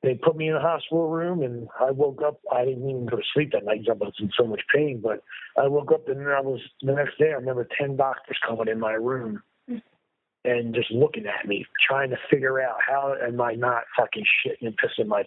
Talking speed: 240 wpm